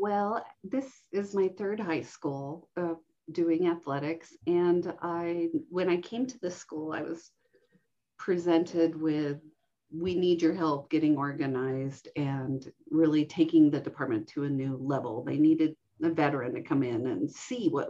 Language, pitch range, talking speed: English, 165-225 Hz, 160 wpm